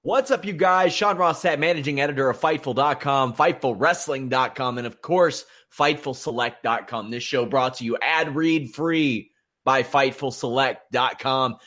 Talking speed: 130 wpm